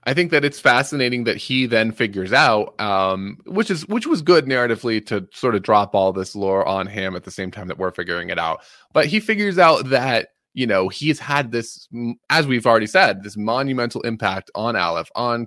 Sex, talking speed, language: male, 215 wpm, English